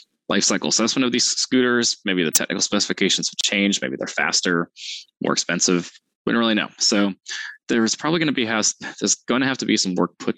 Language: English